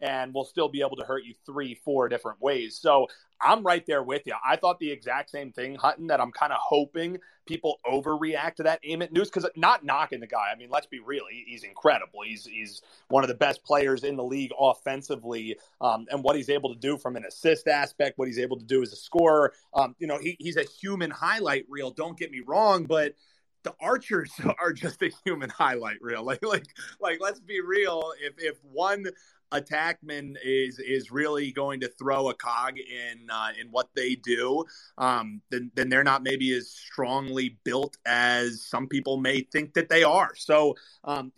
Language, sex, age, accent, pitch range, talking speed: English, male, 30-49, American, 130-155 Hz, 205 wpm